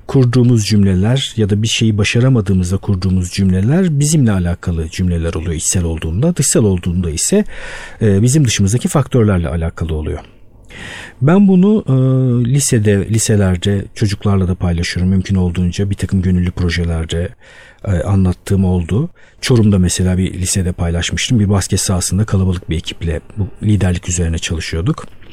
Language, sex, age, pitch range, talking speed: Turkish, male, 50-69, 95-130 Hz, 125 wpm